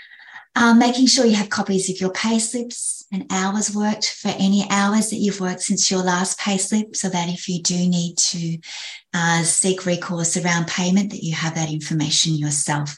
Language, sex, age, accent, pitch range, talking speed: English, female, 30-49, Australian, 160-195 Hz, 185 wpm